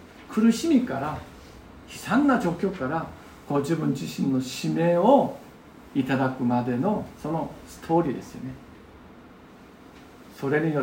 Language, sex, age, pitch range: Japanese, male, 50-69, 130-185 Hz